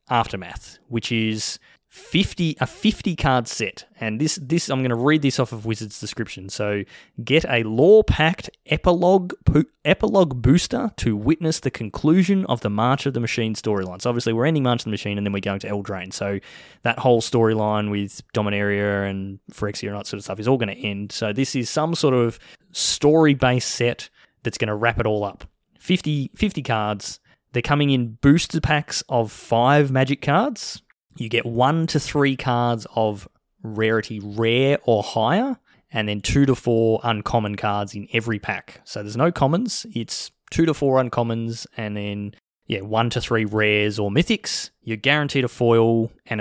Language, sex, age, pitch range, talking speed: English, male, 20-39, 110-150 Hz, 185 wpm